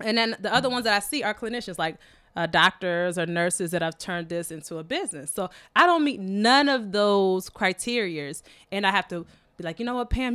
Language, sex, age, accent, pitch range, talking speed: English, female, 20-39, American, 170-225 Hz, 230 wpm